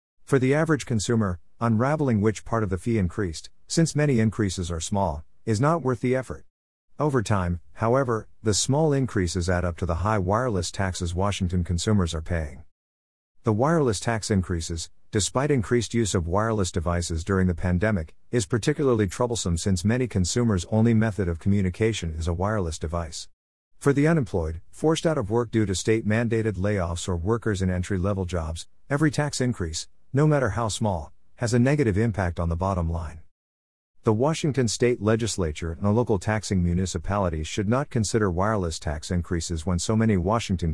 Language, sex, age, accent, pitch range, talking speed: English, male, 50-69, American, 85-115 Hz, 170 wpm